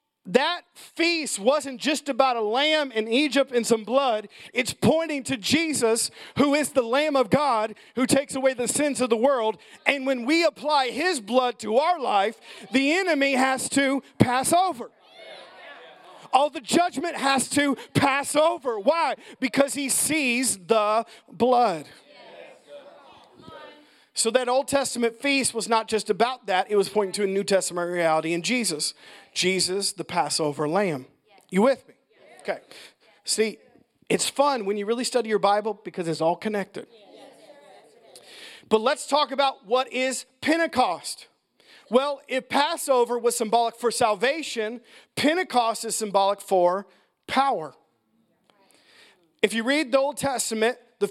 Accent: American